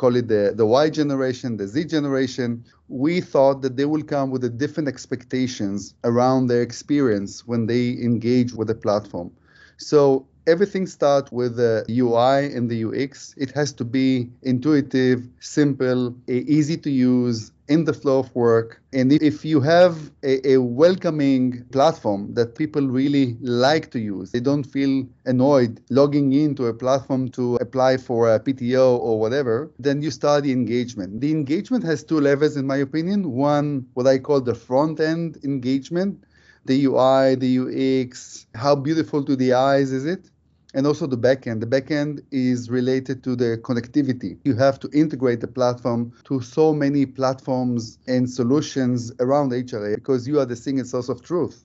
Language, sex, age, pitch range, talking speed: English, male, 30-49, 125-150 Hz, 165 wpm